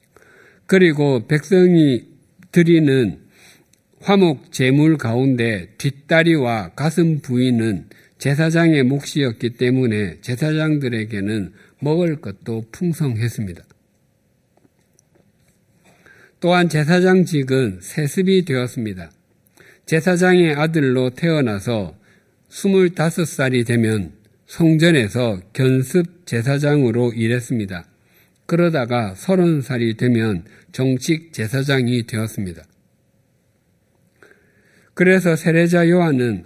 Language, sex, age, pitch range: Korean, male, 50-69, 115-165 Hz